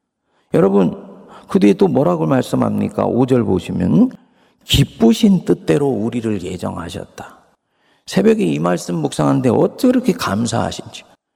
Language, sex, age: Korean, male, 50-69